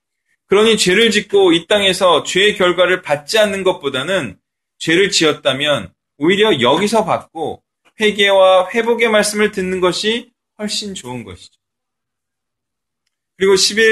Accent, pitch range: native, 130-205 Hz